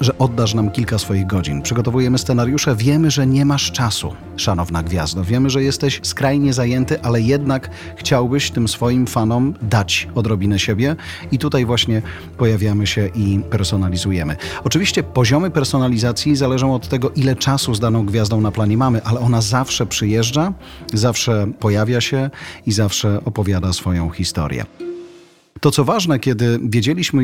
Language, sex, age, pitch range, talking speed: Polish, male, 40-59, 105-130 Hz, 150 wpm